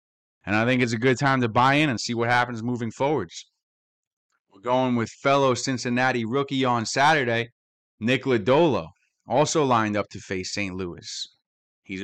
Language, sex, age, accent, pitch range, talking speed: English, male, 20-39, American, 105-125 Hz, 170 wpm